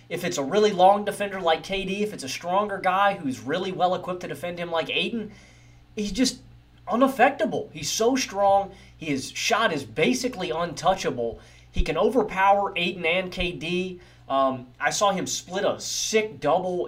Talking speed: 165 wpm